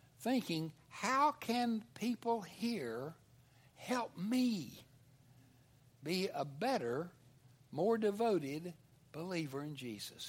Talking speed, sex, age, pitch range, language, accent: 85 wpm, male, 60-79, 125-205 Hz, English, American